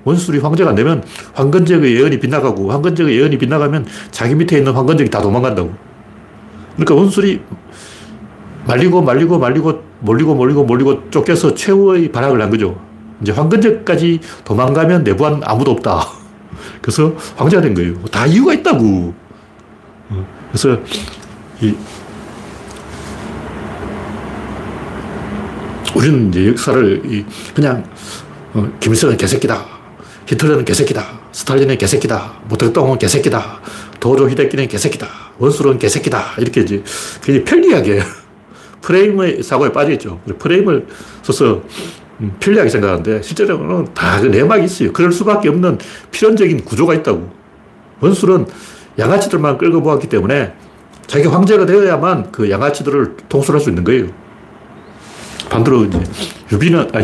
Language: Korean